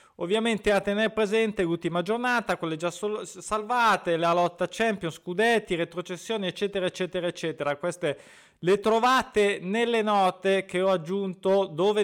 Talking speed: 130 wpm